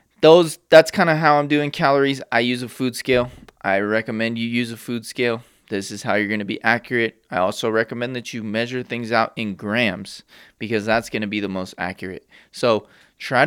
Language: English